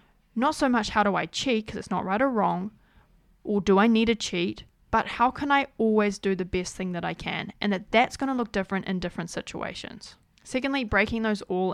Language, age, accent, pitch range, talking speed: English, 20-39, Australian, 185-230 Hz, 230 wpm